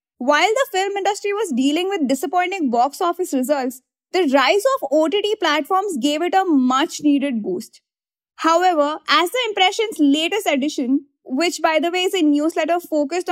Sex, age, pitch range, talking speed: female, 20-39, 280-375 Hz, 160 wpm